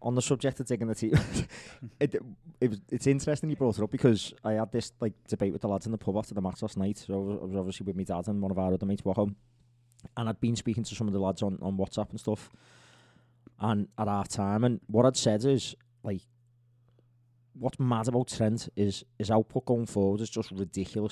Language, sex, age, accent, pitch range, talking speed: English, male, 20-39, British, 105-125 Hz, 240 wpm